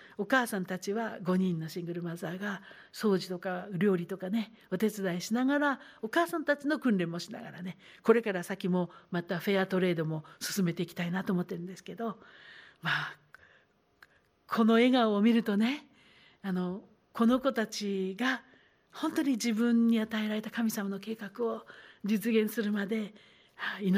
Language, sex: Japanese, female